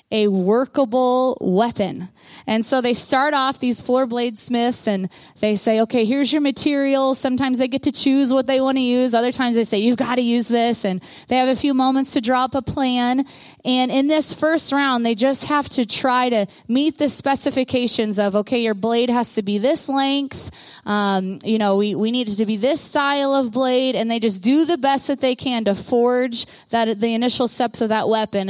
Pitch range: 220-265 Hz